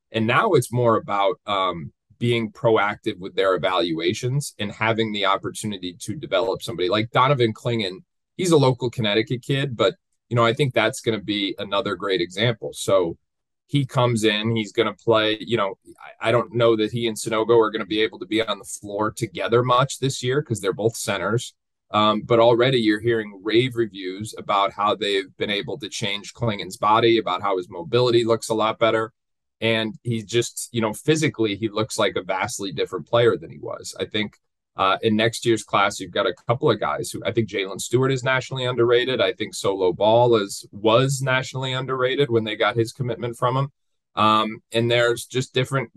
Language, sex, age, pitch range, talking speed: English, male, 30-49, 110-125 Hz, 200 wpm